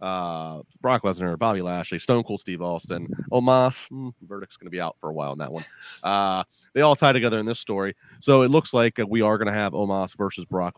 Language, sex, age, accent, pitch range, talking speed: English, male, 30-49, American, 90-115 Hz, 240 wpm